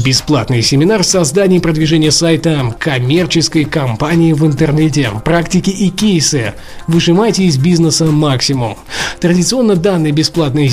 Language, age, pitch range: Russian, 20-39, 150-180 Hz